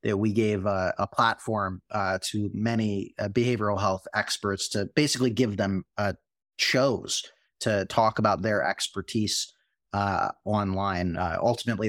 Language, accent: English, American